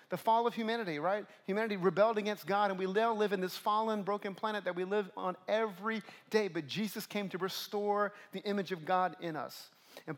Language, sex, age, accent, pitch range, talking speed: English, male, 40-59, American, 180-220 Hz, 210 wpm